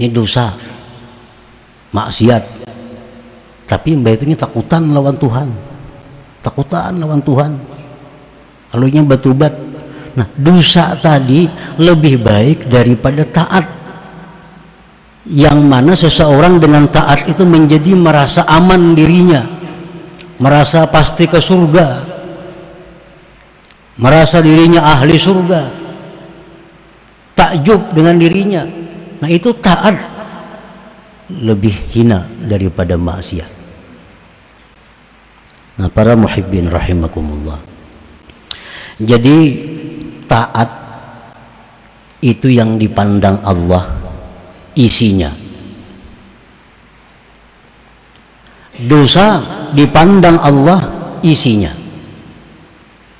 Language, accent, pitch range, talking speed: Indonesian, native, 115-175 Hz, 75 wpm